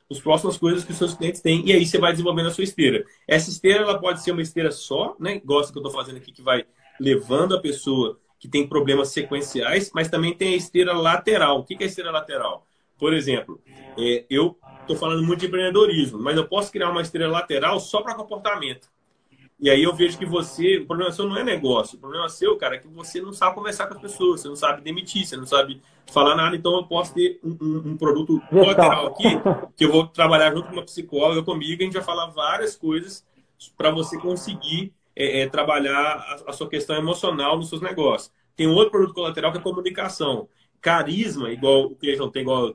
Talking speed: 225 wpm